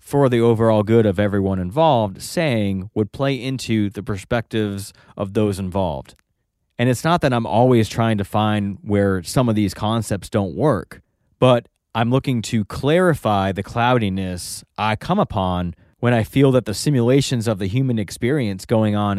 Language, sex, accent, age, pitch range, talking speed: English, male, American, 30-49, 95-120 Hz, 170 wpm